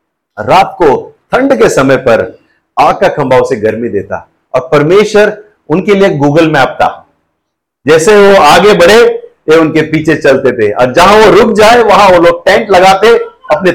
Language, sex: Hindi, male